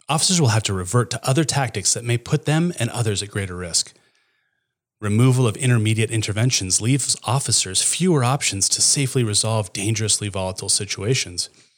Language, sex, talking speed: English, male, 160 wpm